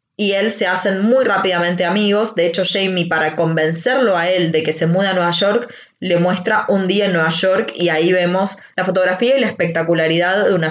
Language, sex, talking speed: Spanish, female, 215 wpm